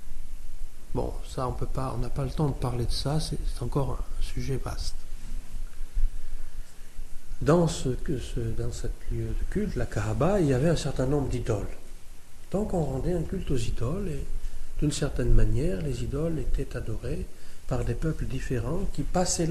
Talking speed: 170 wpm